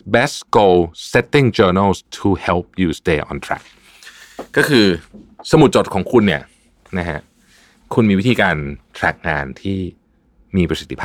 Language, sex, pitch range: Thai, male, 80-115 Hz